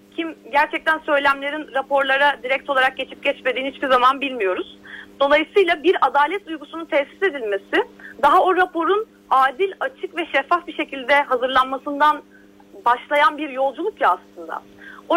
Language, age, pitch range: Turkish, 30-49, 255-330 Hz